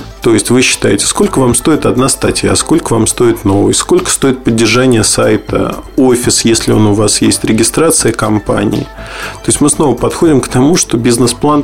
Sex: male